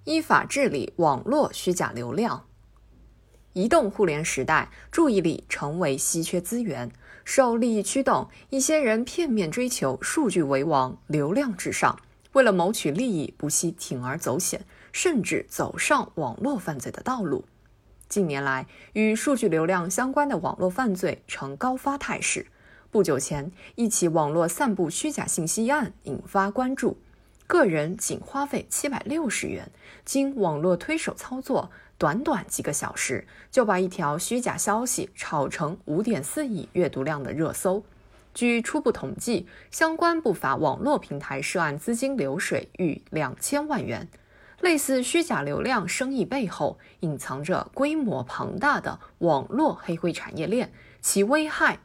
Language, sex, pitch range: Chinese, female, 165-260 Hz